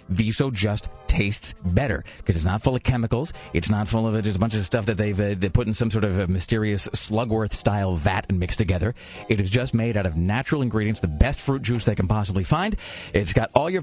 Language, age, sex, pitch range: English, 30-49, male, 95-125 Hz